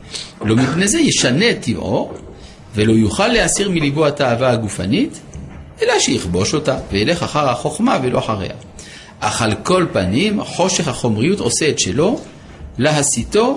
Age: 50-69